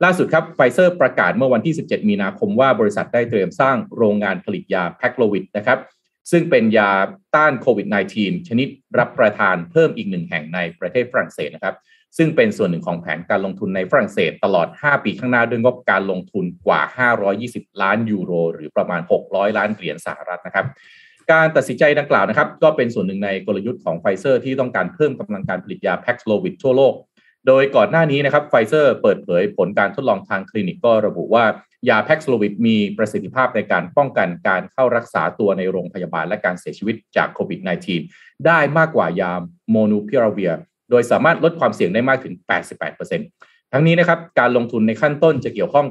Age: 30-49